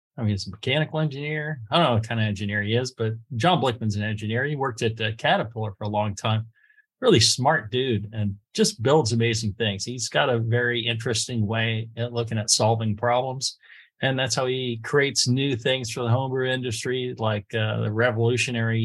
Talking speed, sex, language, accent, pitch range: 195 wpm, male, English, American, 110-130 Hz